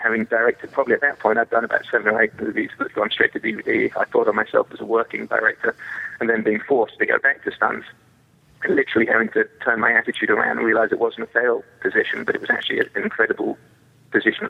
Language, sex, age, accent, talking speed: English, male, 30-49, British, 235 wpm